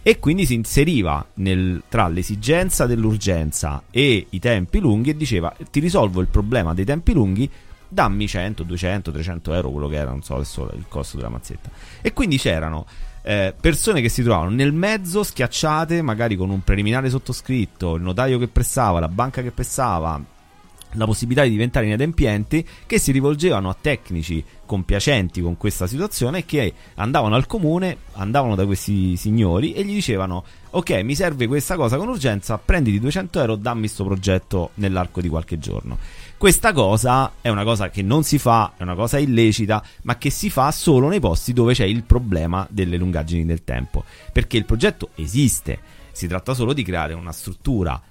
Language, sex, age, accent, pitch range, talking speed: Italian, male, 30-49, native, 90-130 Hz, 175 wpm